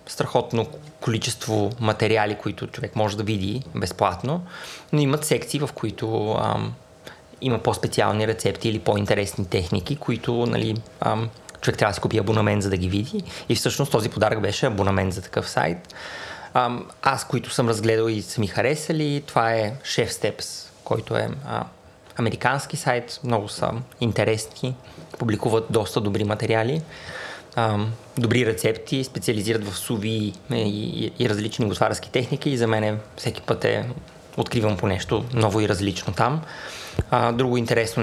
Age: 20-39